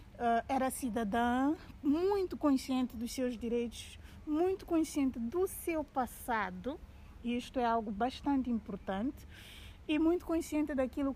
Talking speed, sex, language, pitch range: 125 wpm, female, Portuguese, 225-275 Hz